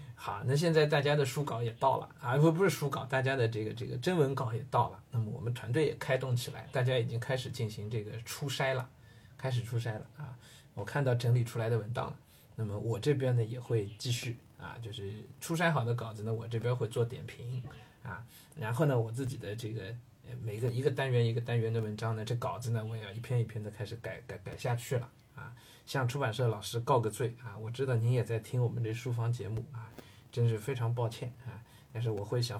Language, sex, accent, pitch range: Chinese, male, native, 115-135 Hz